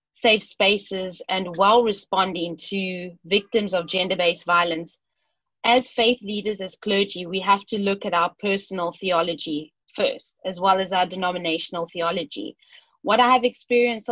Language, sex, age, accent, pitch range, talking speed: English, female, 30-49, South African, 185-225 Hz, 145 wpm